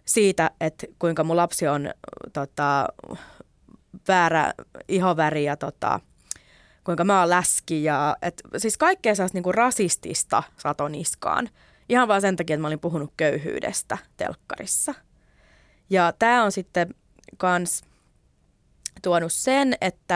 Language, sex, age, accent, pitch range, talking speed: Finnish, female, 20-39, native, 160-205 Hz, 115 wpm